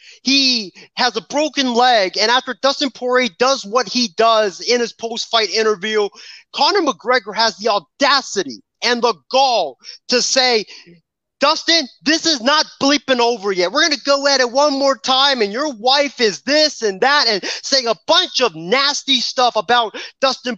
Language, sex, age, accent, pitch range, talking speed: English, male, 30-49, American, 210-255 Hz, 170 wpm